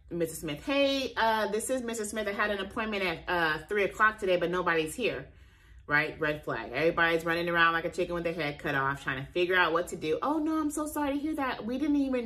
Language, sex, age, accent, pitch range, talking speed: English, female, 30-49, American, 165-215 Hz, 255 wpm